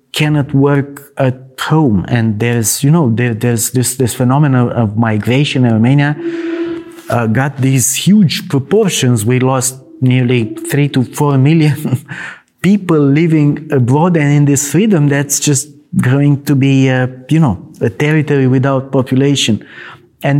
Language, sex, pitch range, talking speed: Hungarian, male, 120-145 Hz, 140 wpm